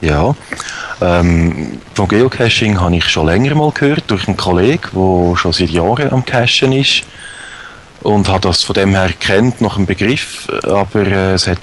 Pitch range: 95-110 Hz